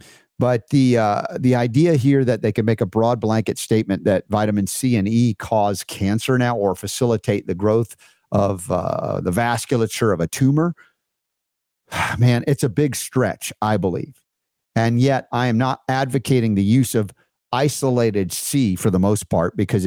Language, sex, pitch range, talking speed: English, male, 110-135 Hz, 170 wpm